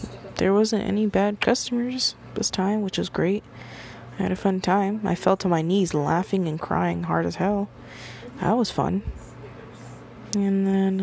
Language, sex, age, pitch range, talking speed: English, female, 20-39, 170-200 Hz, 170 wpm